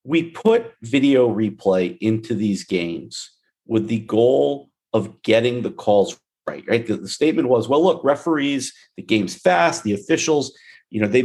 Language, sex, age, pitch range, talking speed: English, male, 50-69, 100-145 Hz, 165 wpm